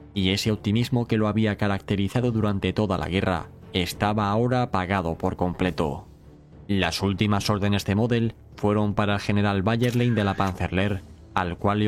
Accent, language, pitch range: Spanish, Spanish, 90-105 Hz